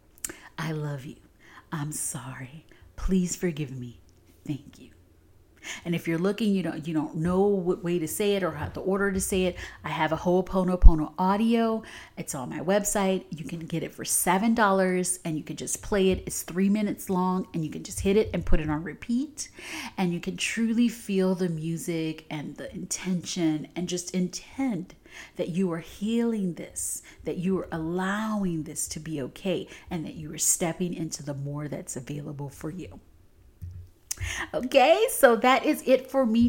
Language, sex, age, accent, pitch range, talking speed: English, female, 30-49, American, 160-230 Hz, 185 wpm